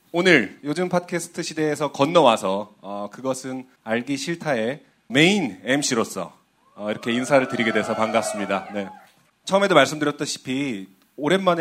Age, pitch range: 30-49, 115-170 Hz